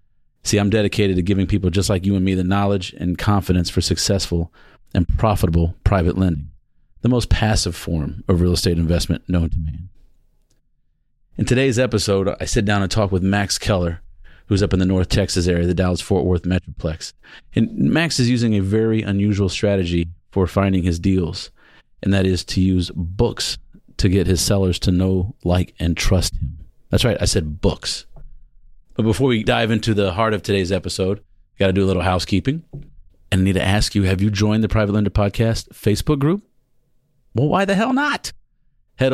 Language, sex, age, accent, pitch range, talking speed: English, male, 40-59, American, 90-110 Hz, 190 wpm